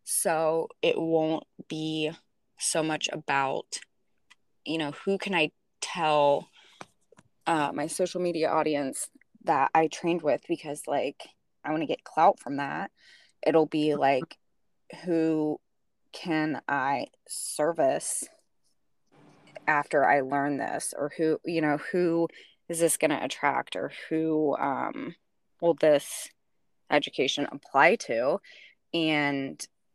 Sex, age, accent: female, 20-39, American